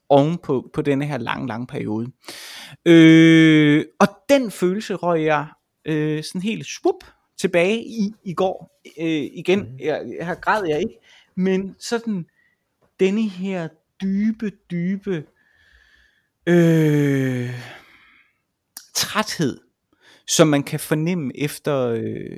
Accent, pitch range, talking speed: native, 140-190 Hz, 120 wpm